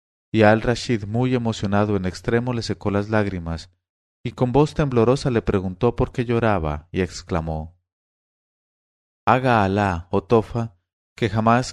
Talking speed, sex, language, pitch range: 145 wpm, male, English, 90-120 Hz